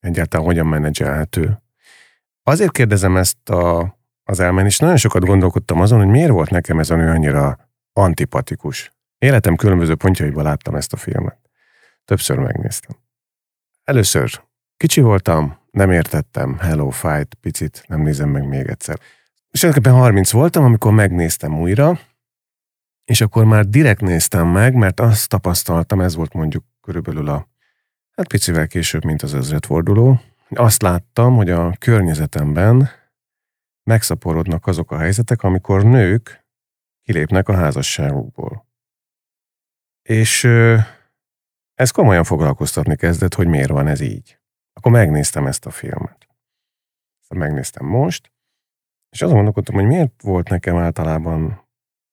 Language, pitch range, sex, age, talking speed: Hungarian, 80-120 Hz, male, 40-59, 125 wpm